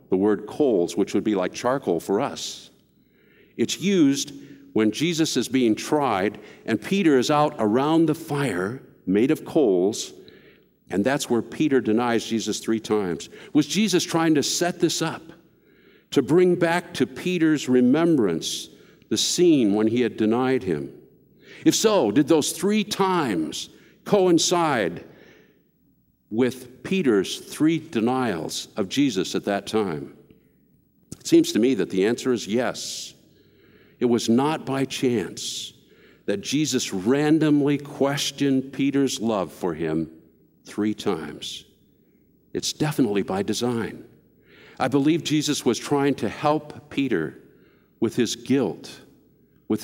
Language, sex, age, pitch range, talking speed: English, male, 60-79, 115-160 Hz, 135 wpm